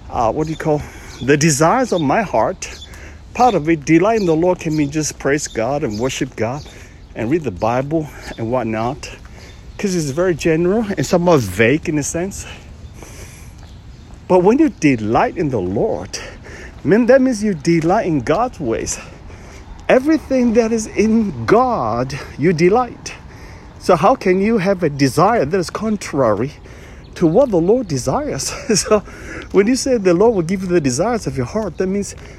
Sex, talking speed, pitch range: male, 175 wpm, 130-210 Hz